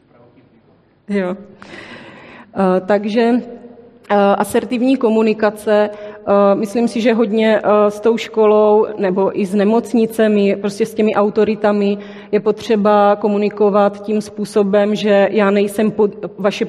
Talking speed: 100 wpm